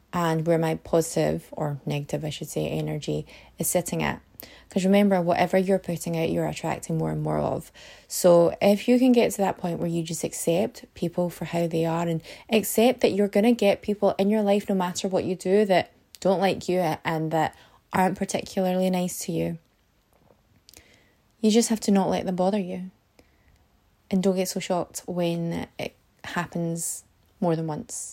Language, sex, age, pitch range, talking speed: English, female, 20-39, 160-205 Hz, 190 wpm